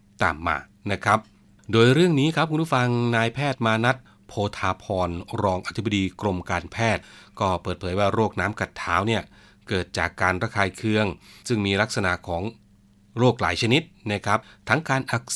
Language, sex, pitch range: Thai, male, 95-115 Hz